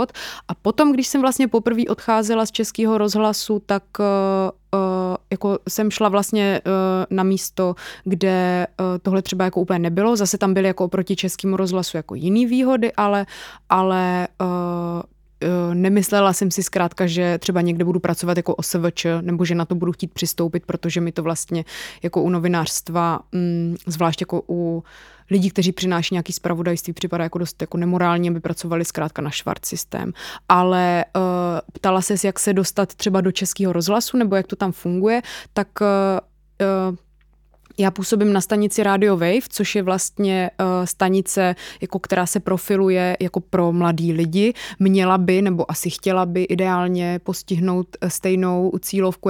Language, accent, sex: Czech, native, female